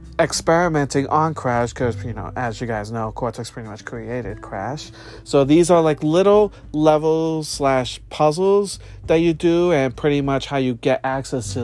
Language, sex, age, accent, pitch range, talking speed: English, male, 40-59, American, 120-150 Hz, 175 wpm